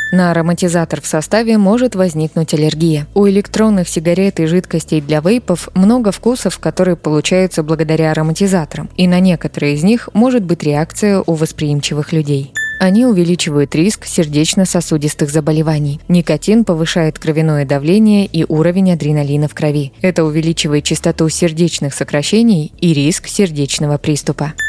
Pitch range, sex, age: 155-185 Hz, female, 20-39